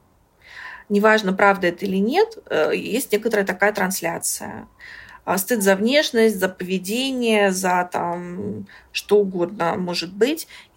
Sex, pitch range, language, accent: female, 185-220 Hz, Russian, native